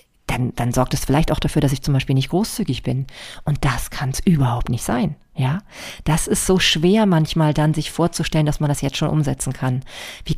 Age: 40-59